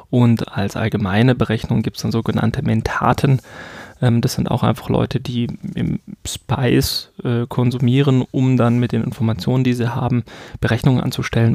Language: German